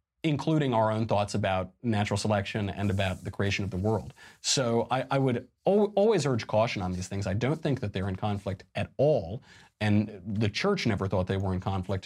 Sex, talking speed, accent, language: male, 215 wpm, American, English